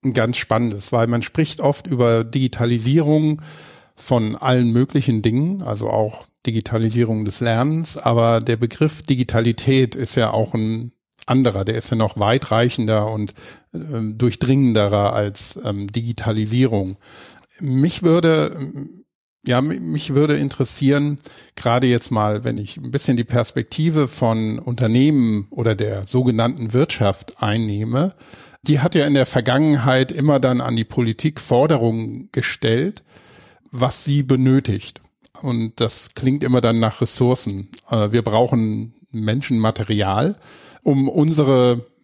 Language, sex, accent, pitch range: German, male, German, 115-140 Hz